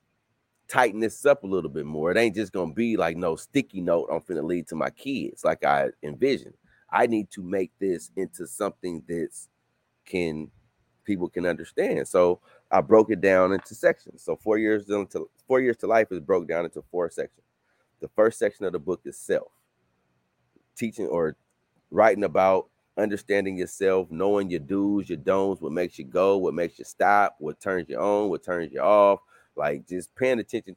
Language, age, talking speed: English, 30-49, 195 wpm